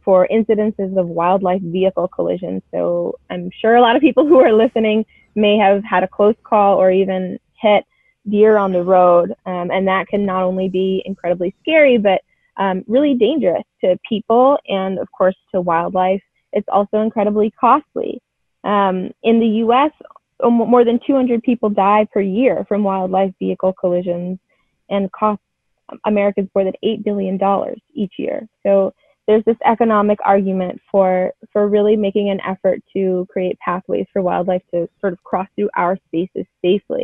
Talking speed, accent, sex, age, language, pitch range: 165 wpm, American, female, 20-39, English, 185-220 Hz